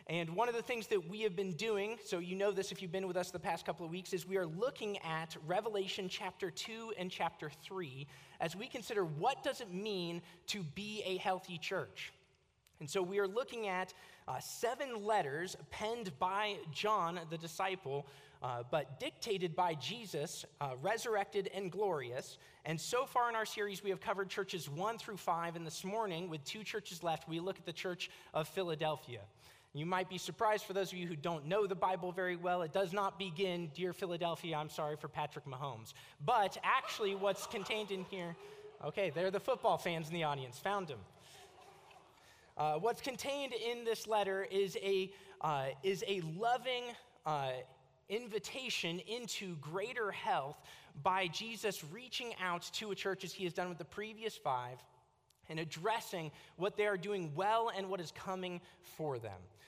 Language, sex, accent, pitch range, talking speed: English, male, American, 165-205 Hz, 185 wpm